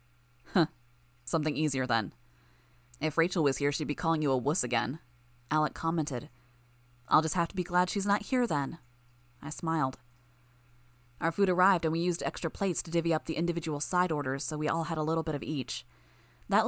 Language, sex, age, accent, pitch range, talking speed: English, female, 20-39, American, 125-175 Hz, 195 wpm